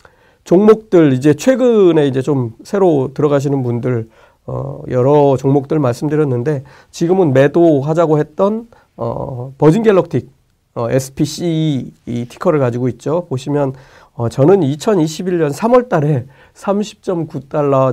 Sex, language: male, Korean